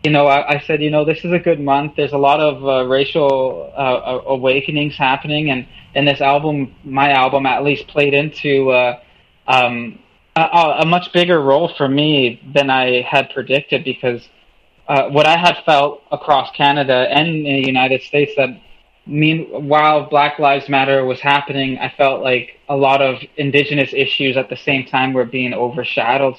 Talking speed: 175 wpm